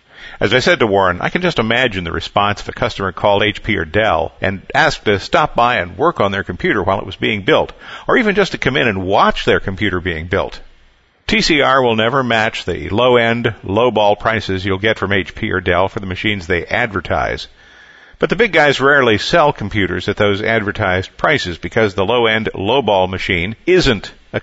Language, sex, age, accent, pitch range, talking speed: English, male, 50-69, American, 95-120 Hz, 200 wpm